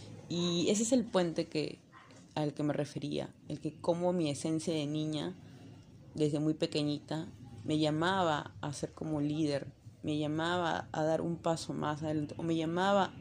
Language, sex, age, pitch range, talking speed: Spanish, female, 20-39, 145-175 Hz, 170 wpm